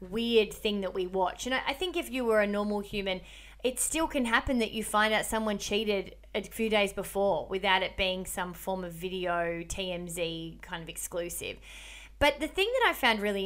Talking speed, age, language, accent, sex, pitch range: 205 wpm, 20-39, English, Australian, female, 190-235 Hz